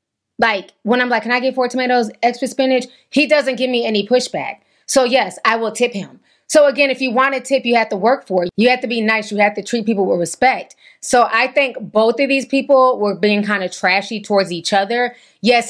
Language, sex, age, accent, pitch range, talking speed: English, female, 20-39, American, 205-255 Hz, 245 wpm